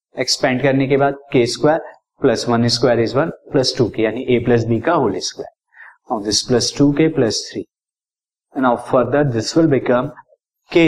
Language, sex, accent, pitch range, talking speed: Hindi, male, native, 125-165 Hz, 170 wpm